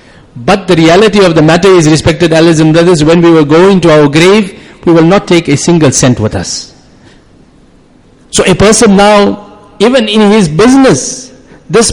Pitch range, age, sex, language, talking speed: 165-210 Hz, 50-69, male, English, 170 wpm